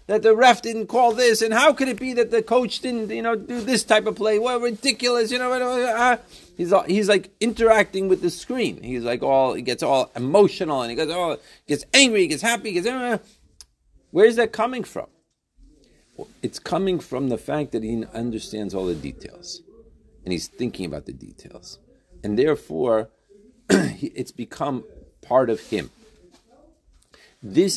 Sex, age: male, 40-59